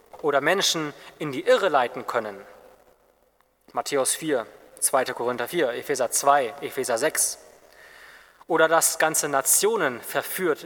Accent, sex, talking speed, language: German, male, 120 wpm, German